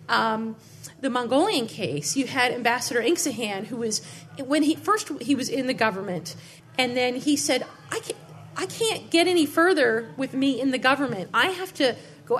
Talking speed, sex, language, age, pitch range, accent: 180 wpm, female, English, 40-59, 220-280 Hz, American